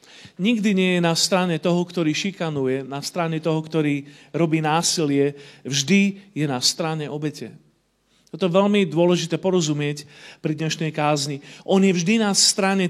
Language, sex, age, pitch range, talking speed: Slovak, male, 40-59, 150-190 Hz, 150 wpm